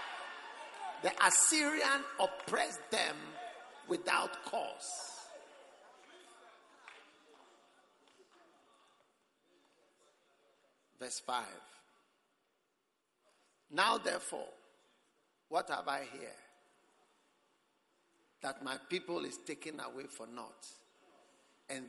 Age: 50-69